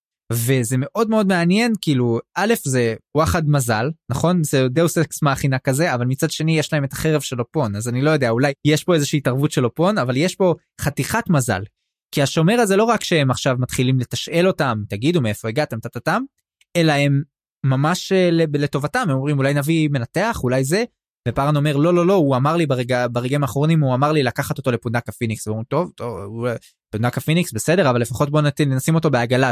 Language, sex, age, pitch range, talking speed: Hebrew, male, 20-39, 125-160 Hz, 195 wpm